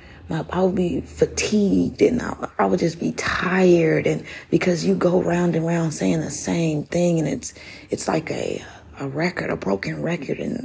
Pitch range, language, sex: 145-185 Hz, English, female